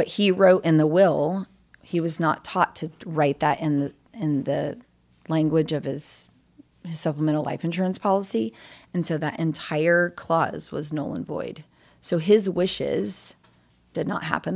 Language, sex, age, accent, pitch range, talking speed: English, female, 30-49, American, 140-170 Hz, 165 wpm